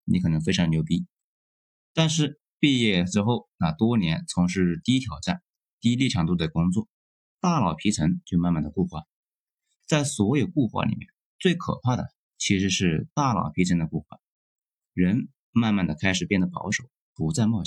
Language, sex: Chinese, male